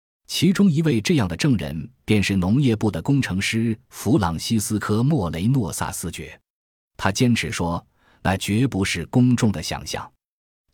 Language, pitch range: Chinese, 85-115 Hz